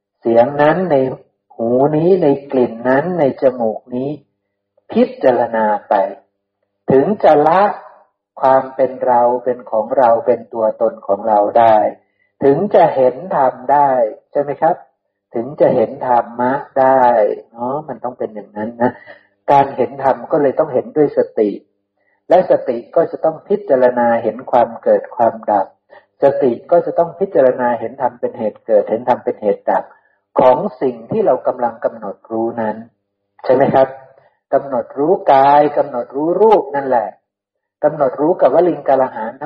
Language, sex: Thai, male